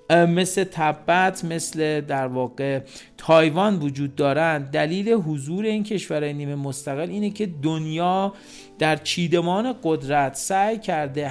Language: Persian